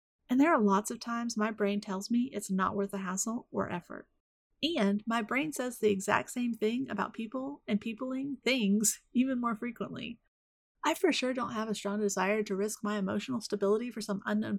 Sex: female